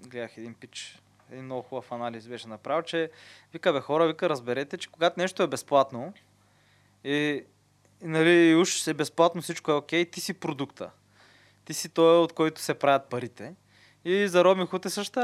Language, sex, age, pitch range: Bulgarian, male, 20-39, 130-170 Hz